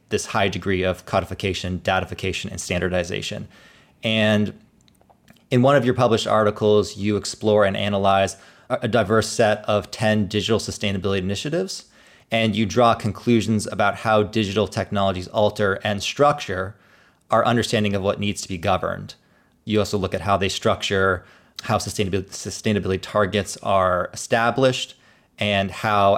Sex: male